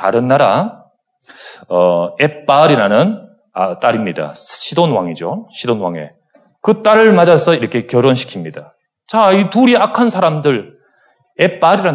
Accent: native